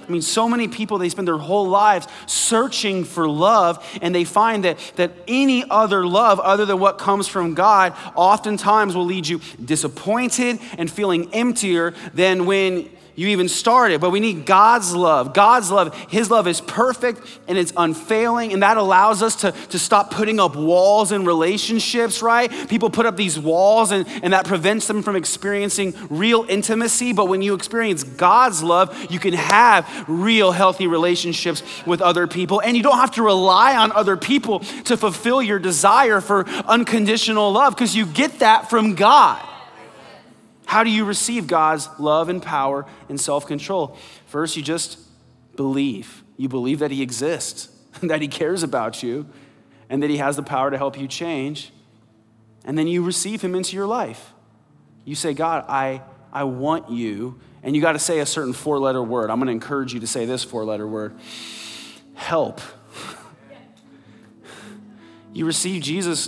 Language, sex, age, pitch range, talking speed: English, male, 30-49, 155-215 Hz, 175 wpm